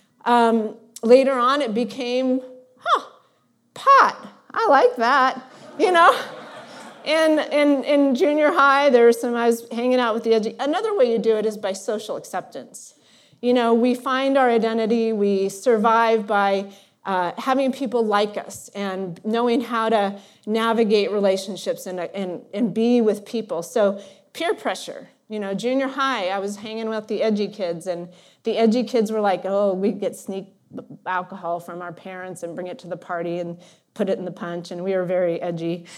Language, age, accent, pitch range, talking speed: English, 30-49, American, 195-245 Hz, 180 wpm